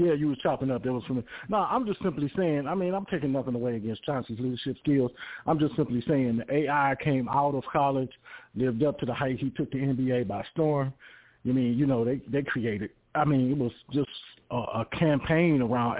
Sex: male